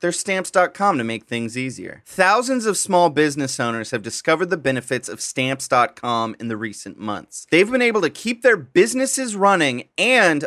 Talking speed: 170 wpm